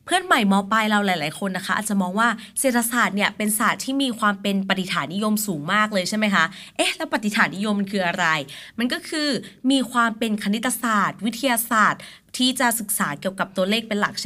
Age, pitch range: 20-39, 190-235 Hz